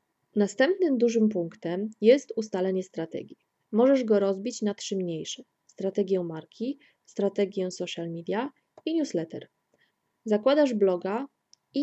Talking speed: 110 wpm